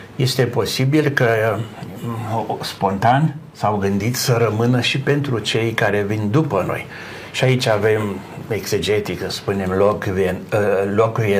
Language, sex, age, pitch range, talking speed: Romanian, male, 60-79, 105-130 Hz, 115 wpm